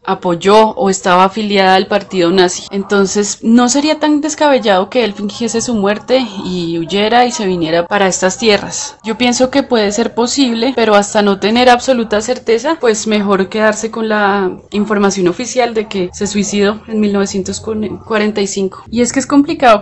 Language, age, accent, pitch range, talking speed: Spanish, 20-39, Colombian, 195-225 Hz, 165 wpm